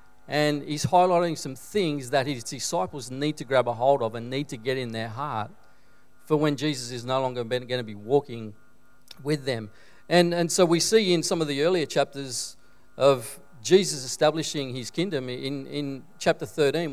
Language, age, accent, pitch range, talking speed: English, 40-59, Australian, 125-155 Hz, 190 wpm